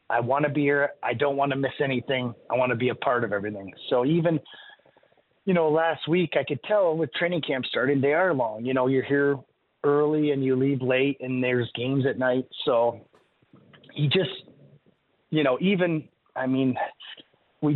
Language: English